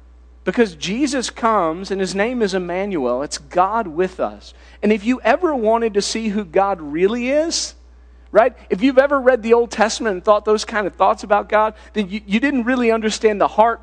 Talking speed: 205 wpm